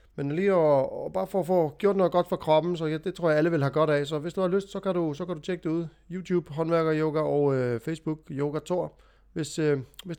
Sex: male